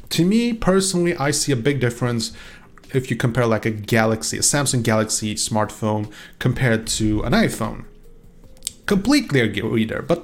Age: 30-49